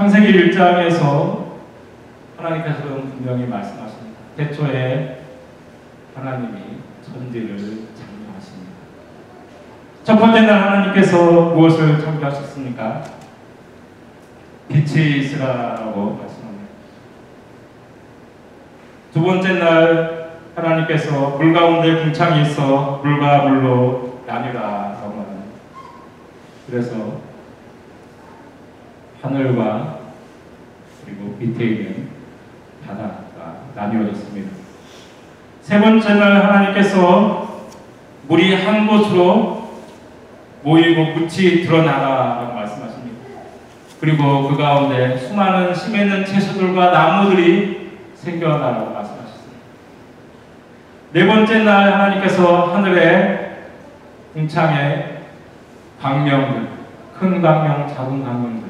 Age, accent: 40-59, native